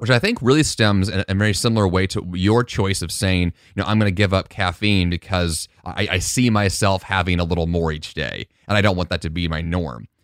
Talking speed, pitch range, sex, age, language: 250 wpm, 90-110 Hz, male, 30-49, English